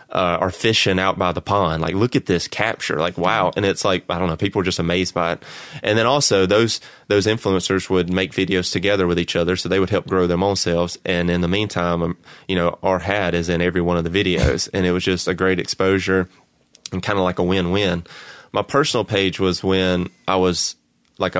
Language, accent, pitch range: English, American, 90-100 Hz